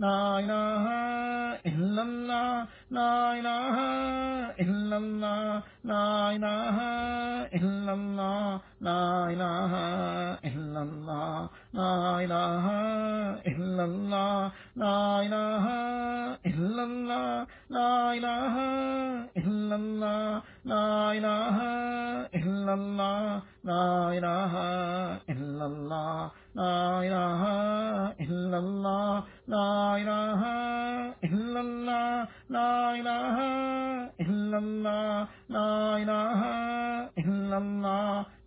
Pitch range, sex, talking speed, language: 180-235 Hz, male, 30 wpm, English